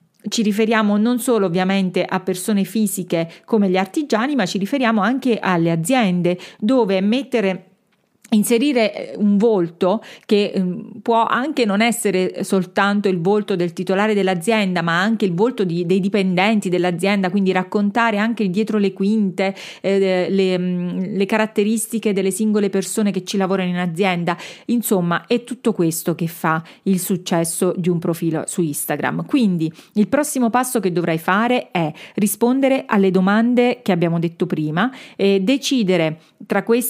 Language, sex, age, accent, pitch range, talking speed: Italian, female, 40-59, native, 185-230 Hz, 145 wpm